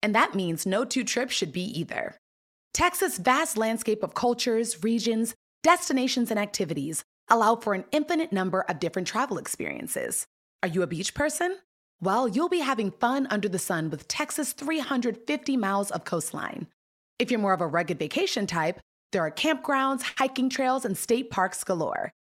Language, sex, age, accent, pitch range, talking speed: English, female, 30-49, American, 195-275 Hz, 170 wpm